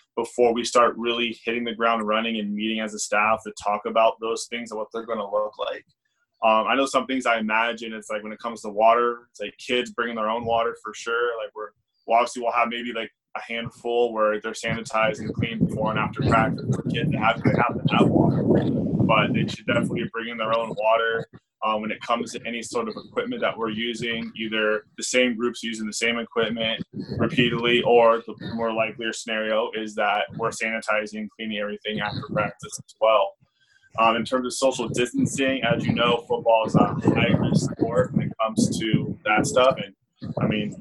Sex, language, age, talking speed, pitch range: male, English, 20-39, 210 wpm, 110-120 Hz